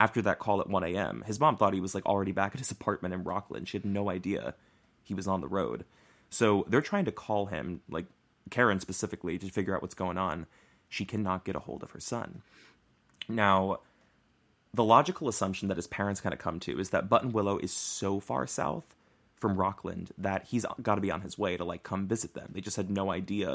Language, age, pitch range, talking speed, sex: English, 20-39, 95-105 Hz, 230 wpm, male